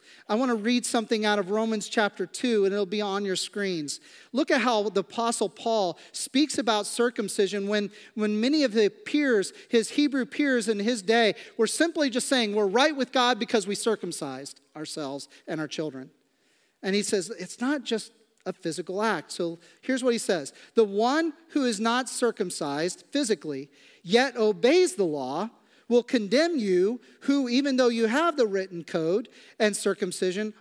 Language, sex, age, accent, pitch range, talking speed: English, male, 40-59, American, 200-260 Hz, 180 wpm